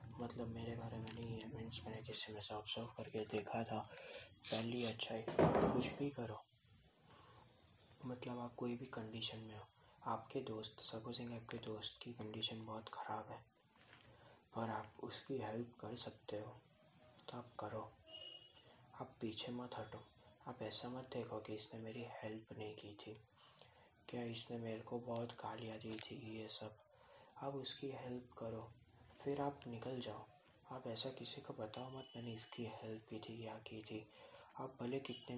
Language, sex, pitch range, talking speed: Hindi, male, 110-120 Hz, 170 wpm